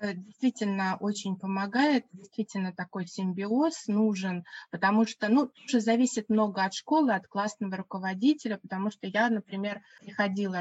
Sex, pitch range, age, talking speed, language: female, 175-220 Hz, 20-39, 130 wpm, Russian